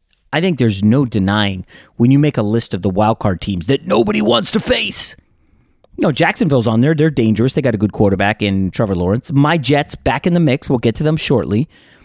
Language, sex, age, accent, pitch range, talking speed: English, male, 30-49, American, 115-170 Hz, 225 wpm